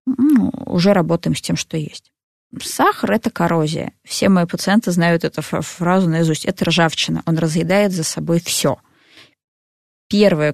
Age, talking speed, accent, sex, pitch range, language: 20-39, 140 wpm, native, female, 165-215 Hz, Russian